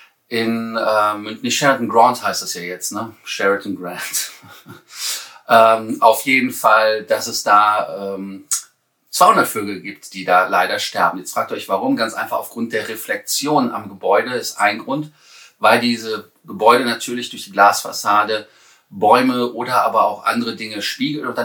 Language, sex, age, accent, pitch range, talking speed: German, male, 30-49, German, 105-125 Hz, 160 wpm